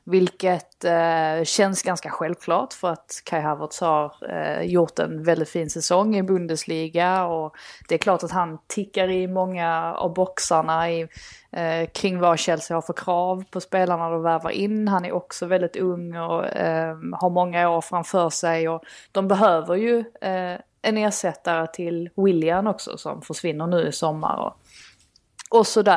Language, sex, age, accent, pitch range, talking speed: Swedish, female, 20-39, native, 165-190 Hz, 170 wpm